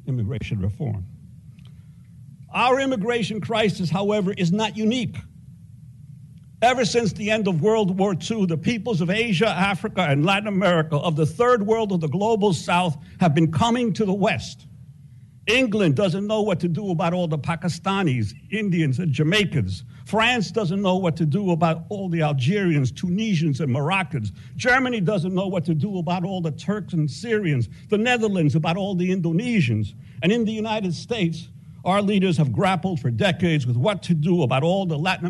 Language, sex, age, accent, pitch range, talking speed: English, male, 60-79, American, 145-195 Hz, 175 wpm